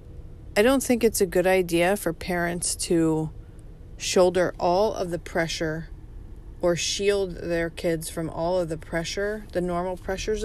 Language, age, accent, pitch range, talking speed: English, 30-49, American, 160-190 Hz, 155 wpm